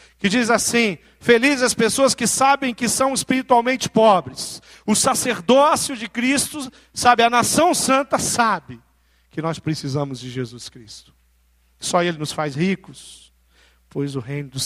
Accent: Brazilian